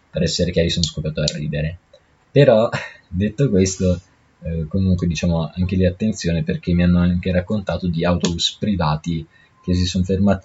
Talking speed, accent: 160 wpm, native